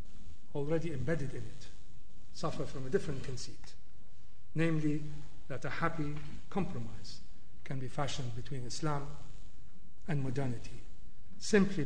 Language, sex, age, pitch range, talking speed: English, male, 40-59, 105-140 Hz, 110 wpm